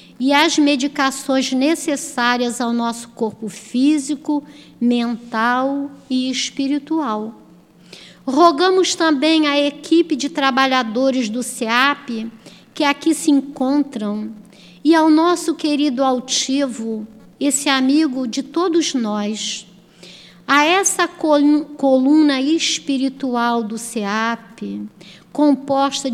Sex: female